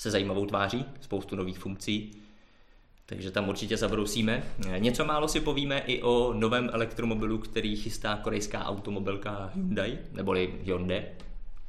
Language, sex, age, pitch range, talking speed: Czech, male, 20-39, 100-110 Hz, 130 wpm